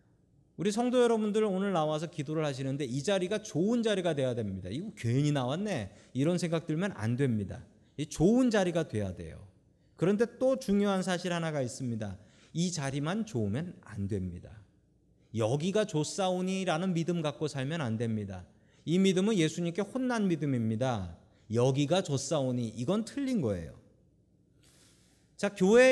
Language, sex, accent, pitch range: Korean, male, native, 125-195 Hz